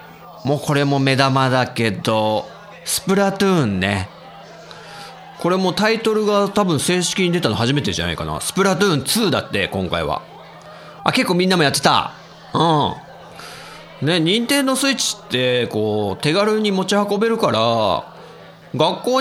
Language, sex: Japanese, male